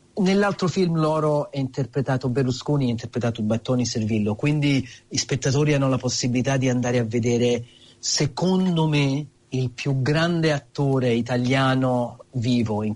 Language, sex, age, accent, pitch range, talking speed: Italian, male, 40-59, native, 120-150 Hz, 135 wpm